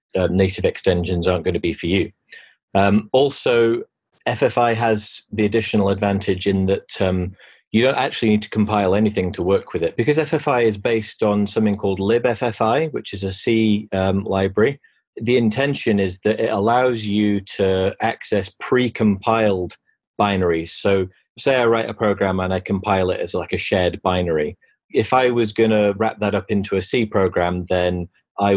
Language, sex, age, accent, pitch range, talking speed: English, male, 30-49, British, 95-110 Hz, 175 wpm